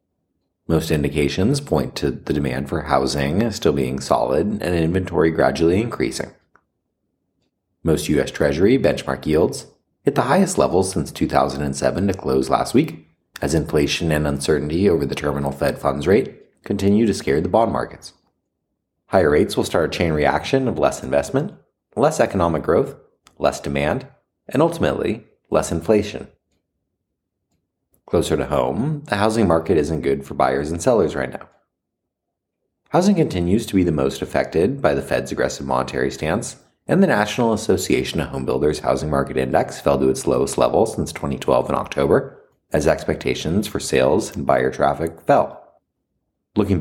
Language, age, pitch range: English, 30-49, 70-95 Hz